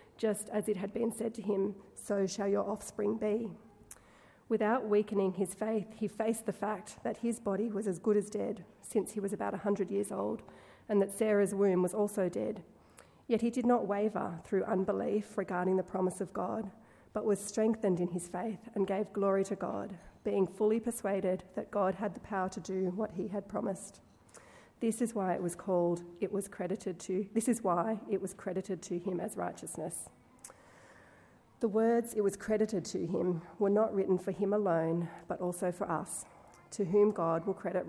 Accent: Australian